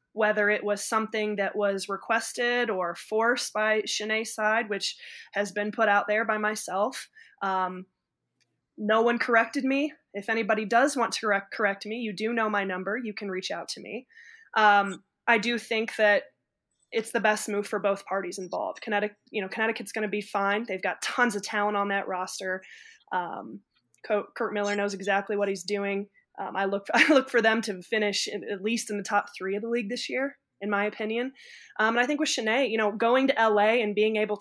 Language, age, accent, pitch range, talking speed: English, 20-39, American, 200-235 Hz, 205 wpm